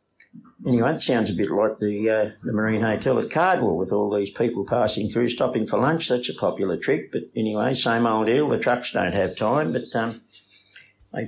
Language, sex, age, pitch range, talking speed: English, male, 60-79, 105-135 Hz, 205 wpm